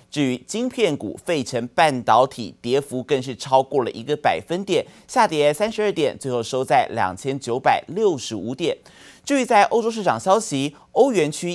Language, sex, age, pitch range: Chinese, male, 30-49, 120-180 Hz